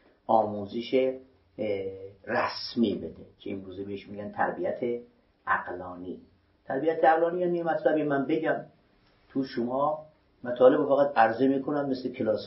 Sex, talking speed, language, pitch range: male, 120 wpm, Persian, 105-150 Hz